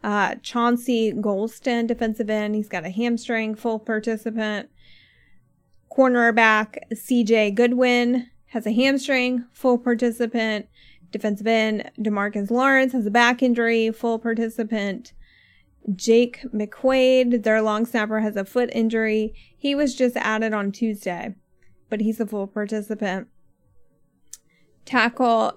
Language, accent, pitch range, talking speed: English, American, 210-245 Hz, 115 wpm